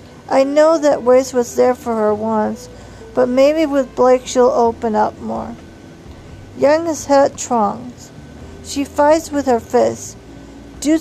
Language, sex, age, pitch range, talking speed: English, female, 50-69, 220-265 Hz, 145 wpm